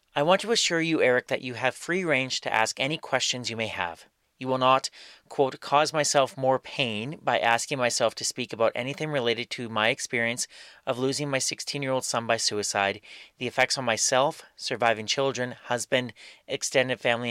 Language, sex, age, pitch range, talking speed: English, male, 30-49, 115-140 Hz, 185 wpm